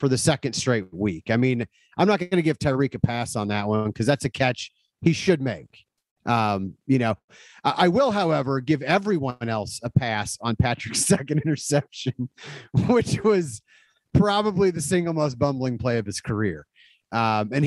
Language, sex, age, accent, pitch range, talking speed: English, male, 30-49, American, 135-180 Hz, 185 wpm